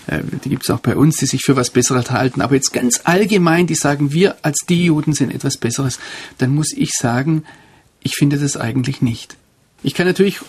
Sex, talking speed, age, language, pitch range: male, 210 wpm, 50-69, German, 135-160 Hz